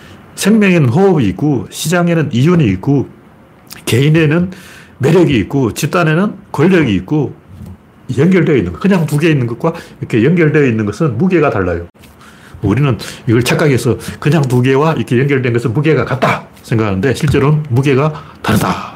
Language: Korean